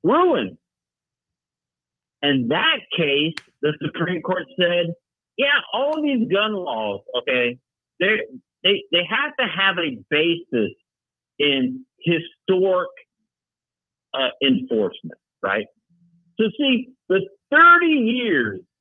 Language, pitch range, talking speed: English, 150-240 Hz, 105 wpm